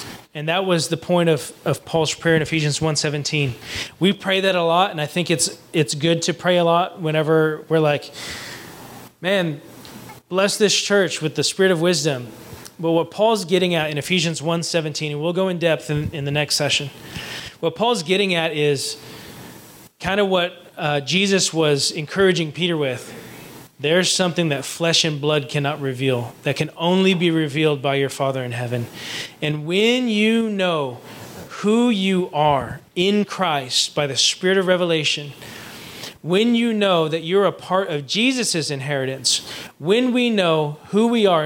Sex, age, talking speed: male, 20-39, 175 wpm